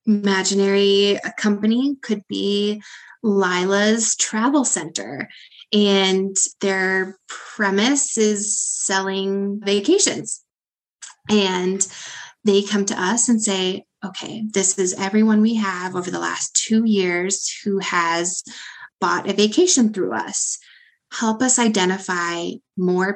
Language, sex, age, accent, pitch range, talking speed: English, female, 20-39, American, 185-215 Hz, 110 wpm